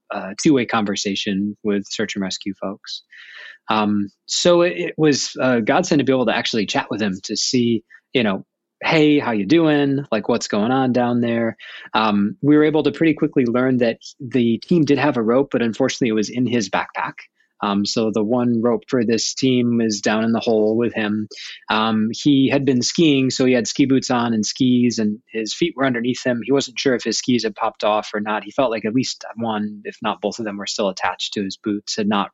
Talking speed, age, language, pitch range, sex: 230 wpm, 20-39, English, 105-140 Hz, male